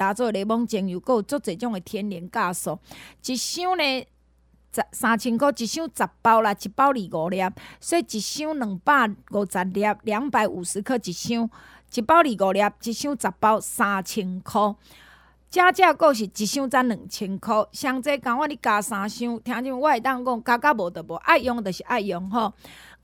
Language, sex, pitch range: Chinese, female, 210-285 Hz